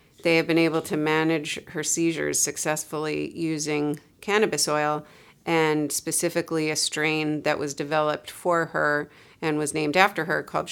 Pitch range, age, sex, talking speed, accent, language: 150-170 Hz, 40-59, female, 150 wpm, American, English